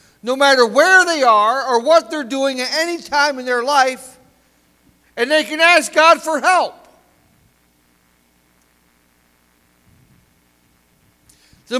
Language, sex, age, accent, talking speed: English, male, 50-69, American, 115 wpm